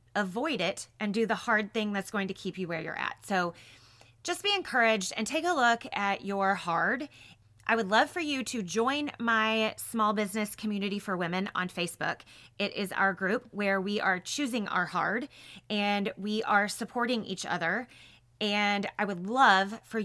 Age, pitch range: 30-49, 170-210 Hz